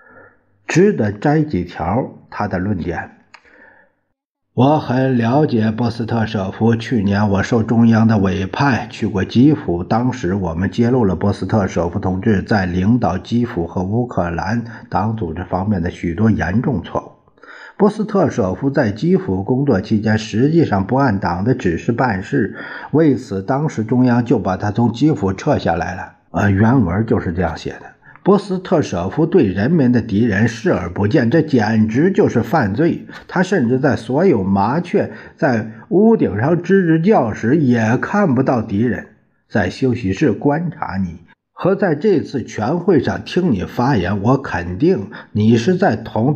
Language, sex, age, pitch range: Chinese, male, 50-69, 100-140 Hz